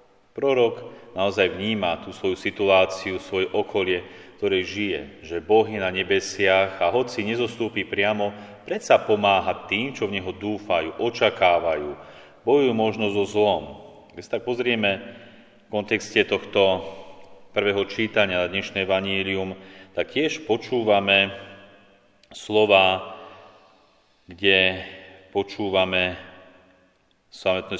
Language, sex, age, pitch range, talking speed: Slovak, male, 30-49, 95-110 Hz, 110 wpm